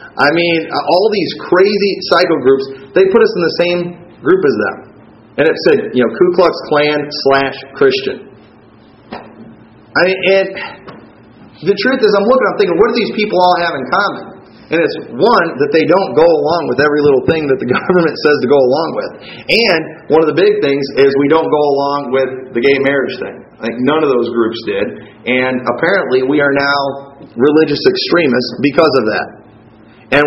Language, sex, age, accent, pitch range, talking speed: English, male, 30-49, American, 140-200 Hz, 195 wpm